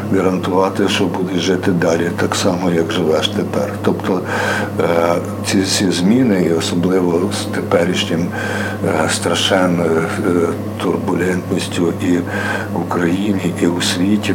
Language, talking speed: Ukrainian, 110 wpm